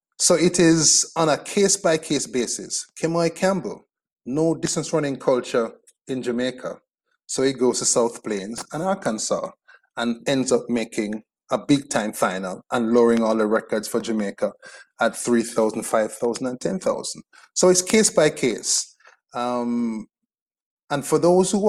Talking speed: 145 wpm